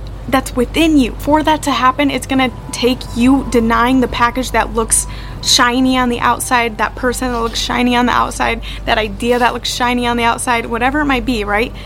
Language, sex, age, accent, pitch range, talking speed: English, female, 20-39, American, 235-275 Hz, 205 wpm